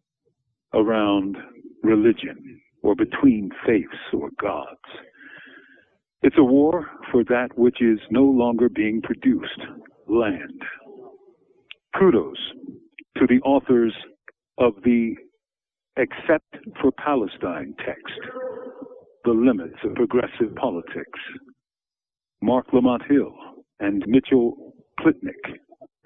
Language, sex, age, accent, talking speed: English, male, 60-79, American, 90 wpm